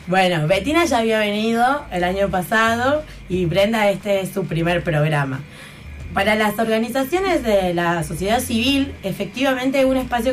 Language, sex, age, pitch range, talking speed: Spanish, female, 20-39, 185-250 Hz, 145 wpm